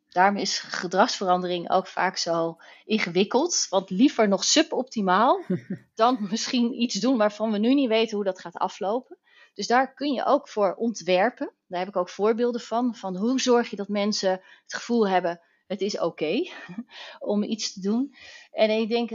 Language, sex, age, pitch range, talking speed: Dutch, female, 30-49, 185-240 Hz, 180 wpm